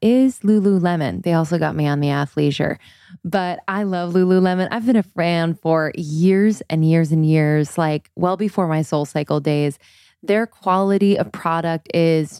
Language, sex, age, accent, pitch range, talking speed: English, female, 20-39, American, 160-195 Hz, 170 wpm